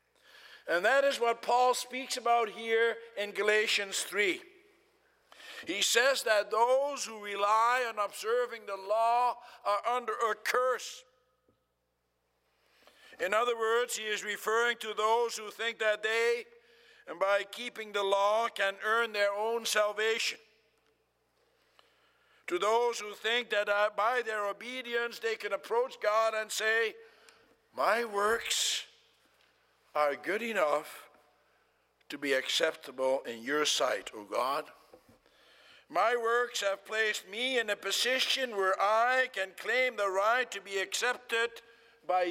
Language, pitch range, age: English, 205-245 Hz, 60-79